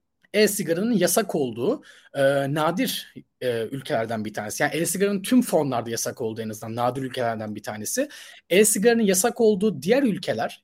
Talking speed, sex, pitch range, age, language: 190 wpm, male, 145-240 Hz, 30-49, Turkish